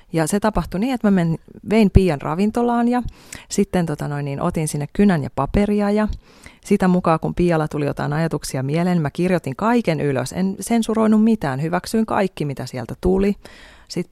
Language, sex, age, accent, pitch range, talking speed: Finnish, female, 30-49, native, 140-185 Hz, 180 wpm